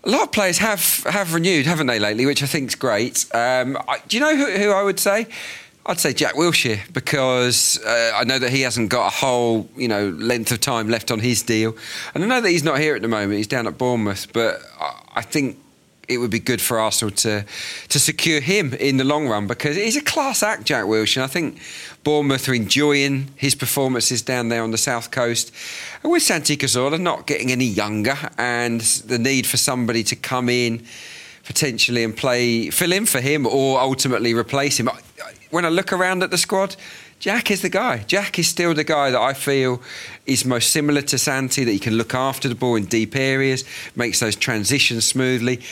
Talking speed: 215 wpm